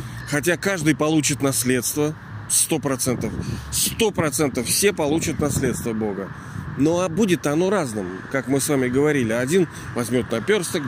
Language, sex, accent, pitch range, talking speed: Russian, male, native, 130-170 Hz, 120 wpm